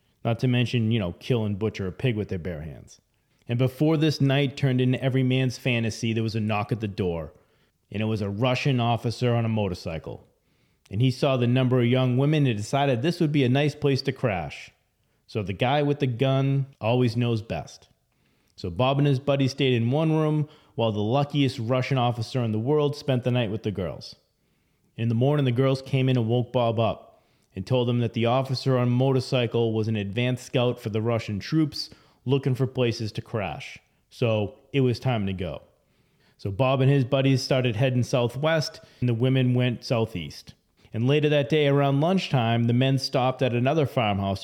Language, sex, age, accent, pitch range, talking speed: English, male, 30-49, American, 110-135 Hz, 205 wpm